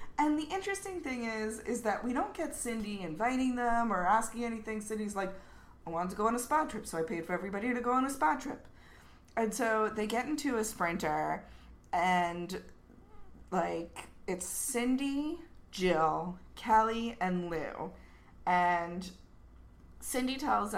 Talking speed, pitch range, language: 160 wpm, 170-230 Hz, English